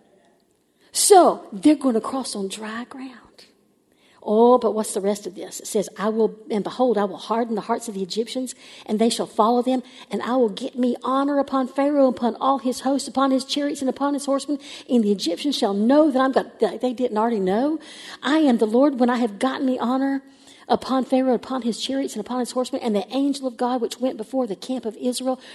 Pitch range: 220-270 Hz